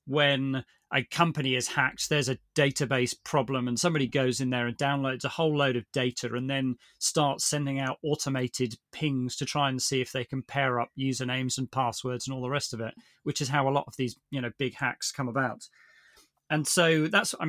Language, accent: English, British